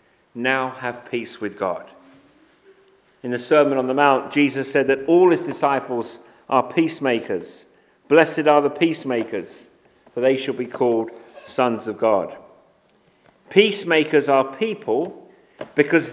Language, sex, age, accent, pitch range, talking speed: English, male, 50-69, British, 125-185 Hz, 130 wpm